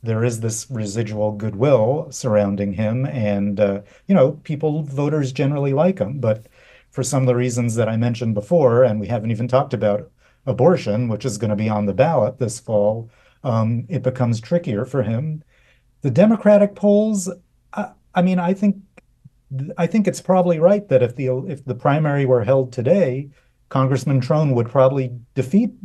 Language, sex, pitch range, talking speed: English, male, 115-140 Hz, 170 wpm